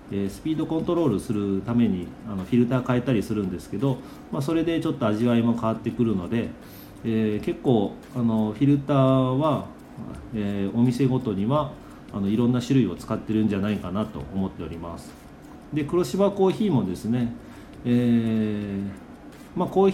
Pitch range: 105-140 Hz